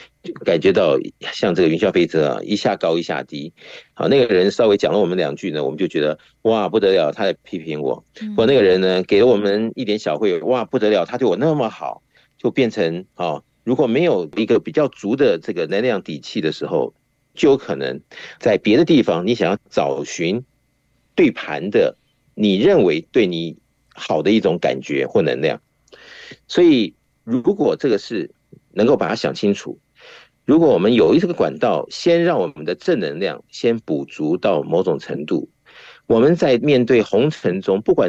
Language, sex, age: Chinese, male, 50-69